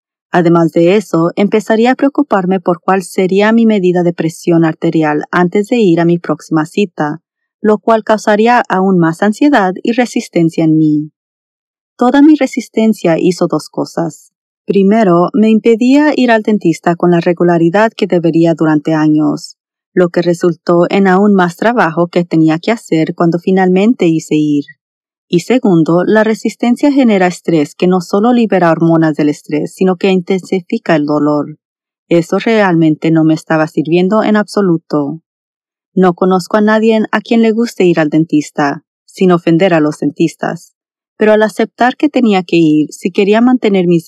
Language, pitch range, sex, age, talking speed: Spanish, 165-215 Hz, female, 30-49, 160 wpm